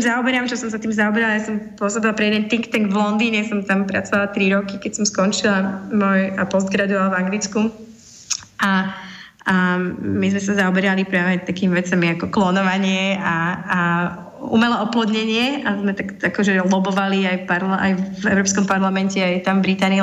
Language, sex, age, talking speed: Slovak, female, 20-39, 170 wpm